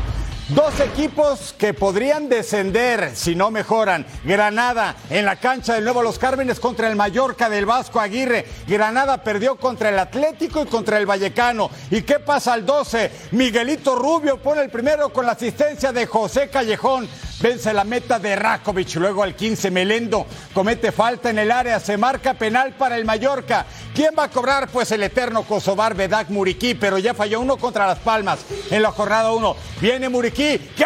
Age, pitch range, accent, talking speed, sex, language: 50-69, 210-265 Hz, Mexican, 175 wpm, male, Spanish